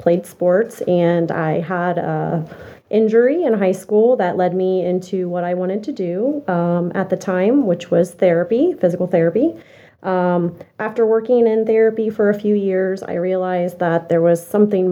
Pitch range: 175-200 Hz